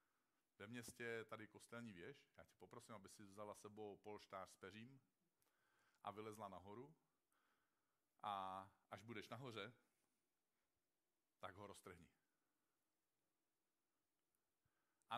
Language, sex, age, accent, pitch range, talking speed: Czech, male, 50-69, native, 100-125 Hz, 105 wpm